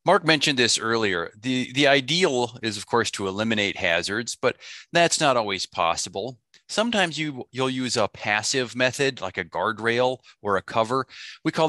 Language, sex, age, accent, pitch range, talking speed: English, male, 30-49, American, 95-130 Hz, 165 wpm